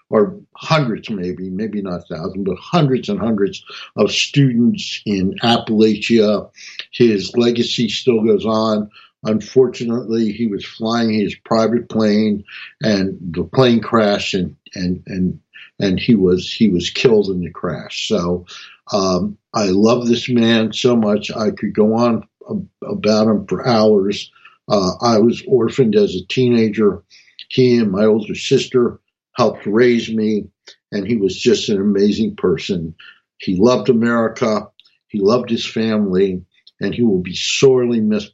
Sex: male